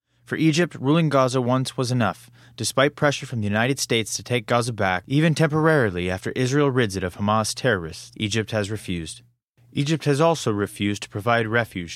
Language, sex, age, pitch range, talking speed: English, male, 20-39, 105-130 Hz, 180 wpm